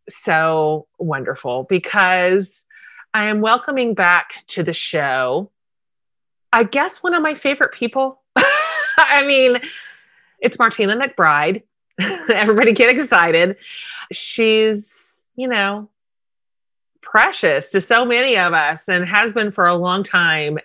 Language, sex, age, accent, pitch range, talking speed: English, female, 30-49, American, 170-240 Hz, 120 wpm